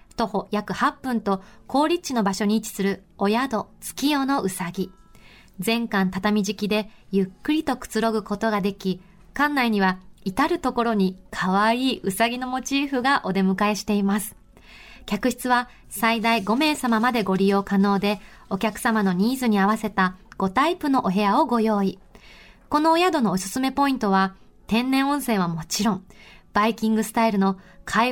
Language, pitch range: Japanese, 200-250 Hz